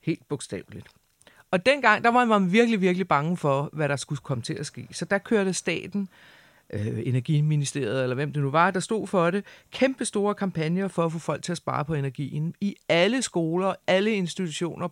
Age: 40-59